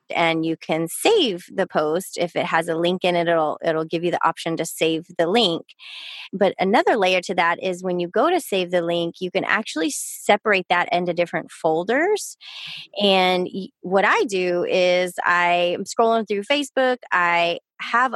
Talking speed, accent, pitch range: 180 wpm, American, 175-225 Hz